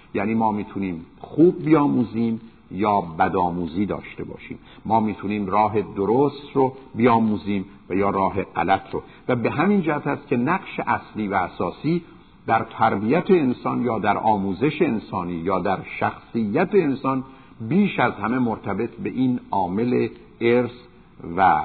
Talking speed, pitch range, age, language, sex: 135 wpm, 100-145 Hz, 50-69, Persian, male